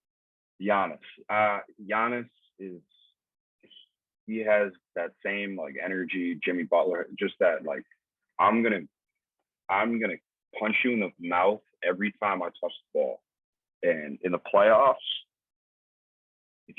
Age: 30-49